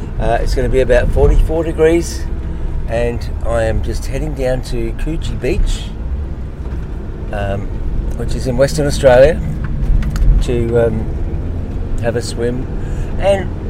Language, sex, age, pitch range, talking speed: English, male, 50-69, 80-115 Hz, 125 wpm